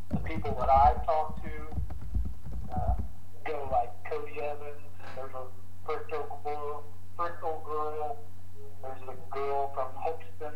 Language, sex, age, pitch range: English, male, 50-69, 90-145 Hz